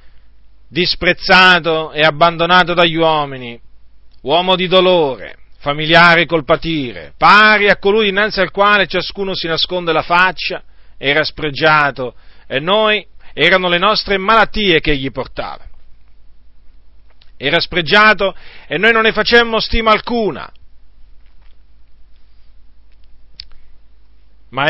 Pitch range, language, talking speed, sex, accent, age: 130-180 Hz, Italian, 105 wpm, male, native, 40-59